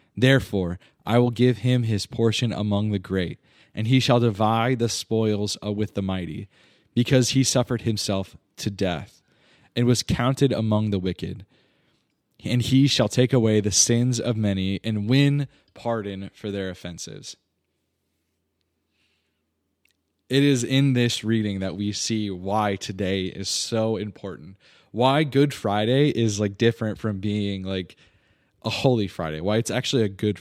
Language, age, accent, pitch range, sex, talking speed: English, 20-39, American, 95-120 Hz, male, 150 wpm